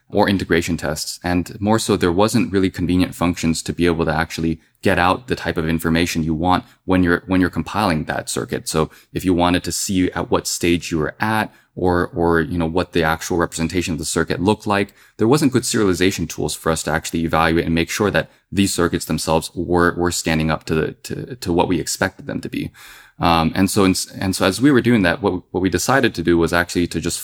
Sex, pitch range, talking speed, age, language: male, 80-95 Hz, 240 wpm, 20-39, English